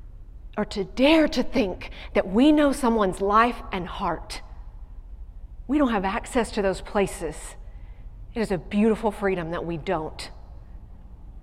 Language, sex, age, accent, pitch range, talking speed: English, female, 40-59, American, 160-225 Hz, 140 wpm